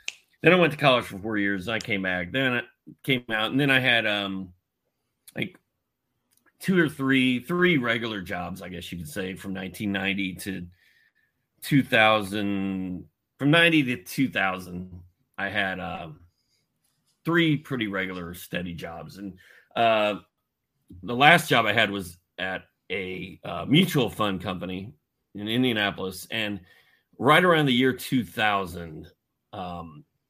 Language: English